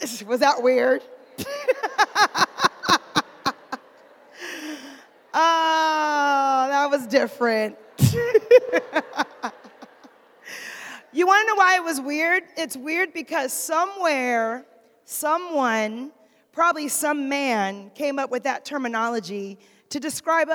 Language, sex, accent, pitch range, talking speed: English, female, American, 245-315 Hz, 90 wpm